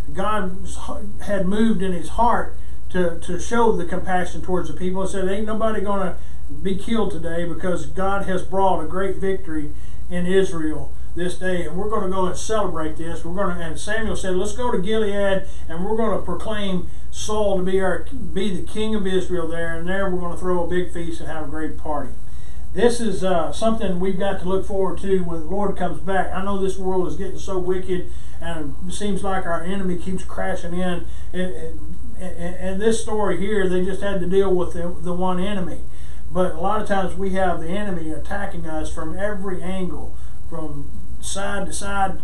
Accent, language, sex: American, English, male